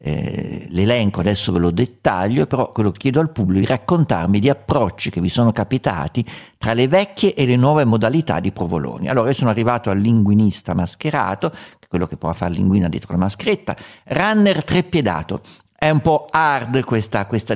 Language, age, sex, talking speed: Italian, 50-69, male, 175 wpm